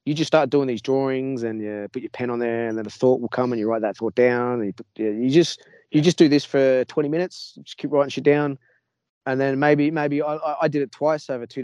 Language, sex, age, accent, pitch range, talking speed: English, male, 20-39, Australian, 110-140 Hz, 270 wpm